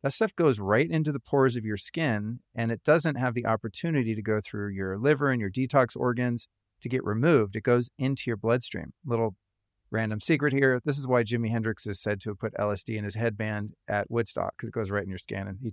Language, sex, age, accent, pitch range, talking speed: English, male, 40-59, American, 105-130 Hz, 235 wpm